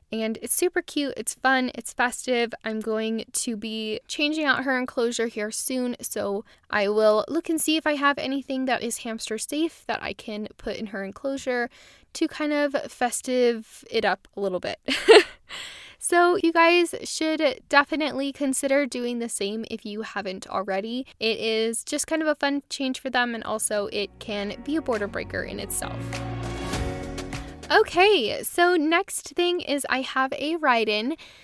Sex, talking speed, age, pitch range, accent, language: female, 170 wpm, 10-29, 225-320 Hz, American, English